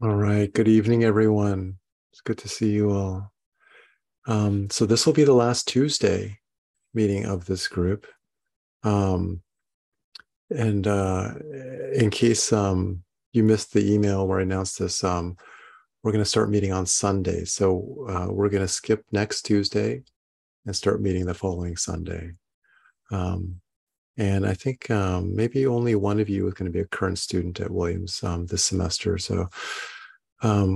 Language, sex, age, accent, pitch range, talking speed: English, male, 40-59, American, 90-105 Hz, 160 wpm